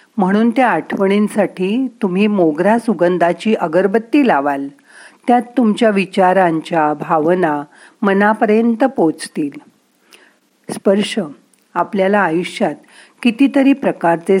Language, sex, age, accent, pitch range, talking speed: Marathi, female, 40-59, native, 165-220 Hz, 80 wpm